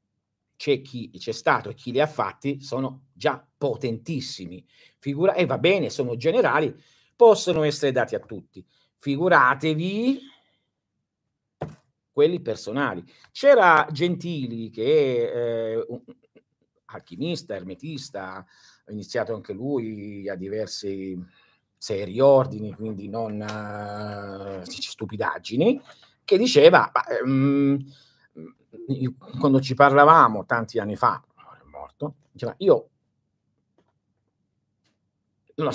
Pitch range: 115-165 Hz